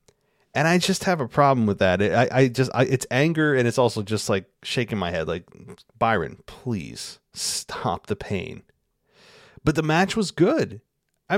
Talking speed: 175 wpm